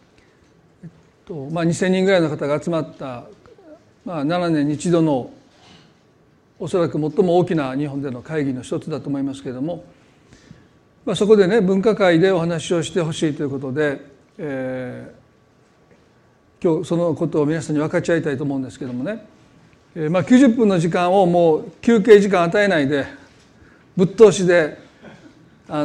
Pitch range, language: 145-195 Hz, Japanese